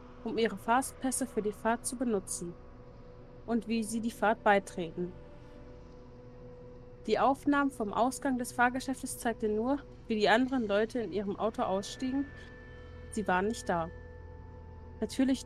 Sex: female